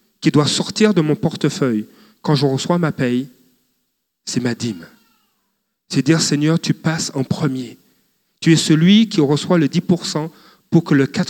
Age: 40-59